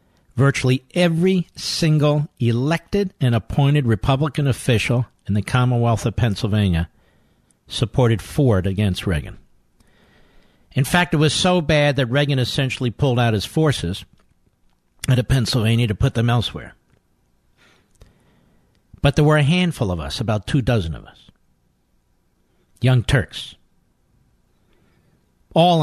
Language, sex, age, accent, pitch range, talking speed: English, male, 50-69, American, 95-145 Hz, 120 wpm